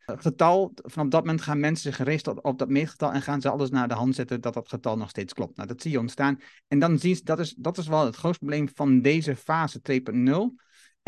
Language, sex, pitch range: Dutch, male, 130-155 Hz